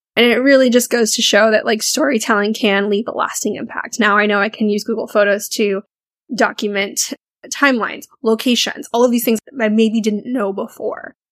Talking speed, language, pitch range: 195 wpm, English, 215-260 Hz